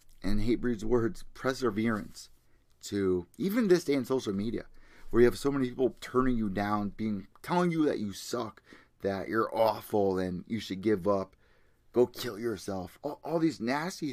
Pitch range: 100-140 Hz